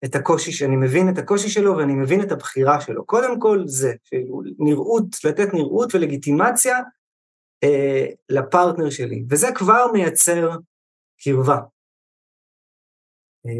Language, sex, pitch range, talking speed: Hebrew, male, 135-195 Hz, 120 wpm